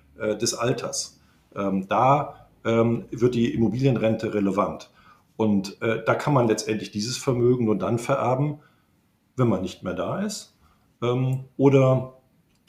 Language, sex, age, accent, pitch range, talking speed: German, male, 50-69, German, 110-135 Hz, 115 wpm